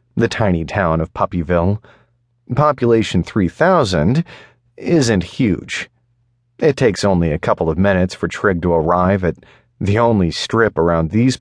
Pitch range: 85-120 Hz